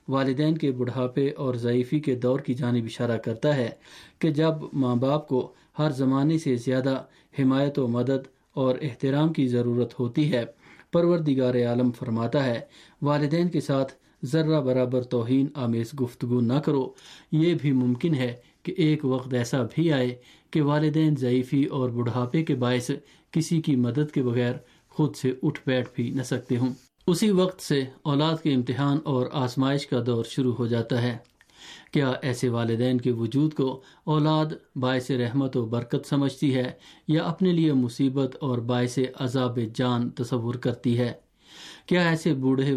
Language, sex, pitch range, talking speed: Urdu, male, 125-150 Hz, 160 wpm